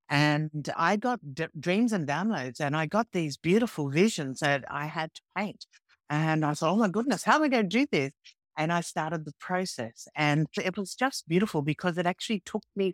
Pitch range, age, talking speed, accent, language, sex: 145-185 Hz, 60-79, 210 wpm, Australian, English, female